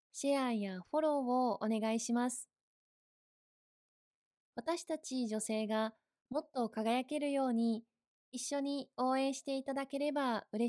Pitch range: 220-285 Hz